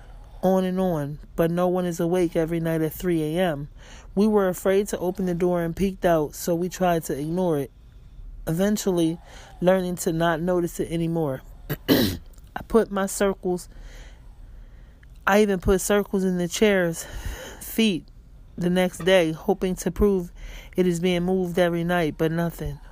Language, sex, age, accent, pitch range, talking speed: English, male, 30-49, American, 160-180 Hz, 160 wpm